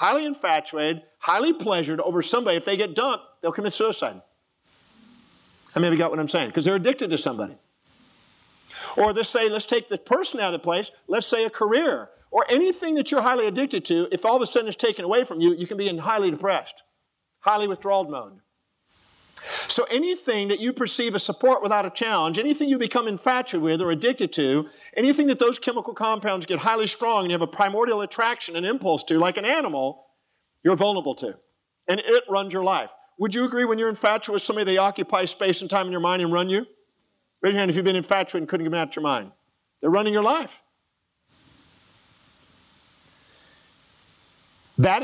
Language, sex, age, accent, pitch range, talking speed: English, male, 50-69, American, 175-240 Hz, 200 wpm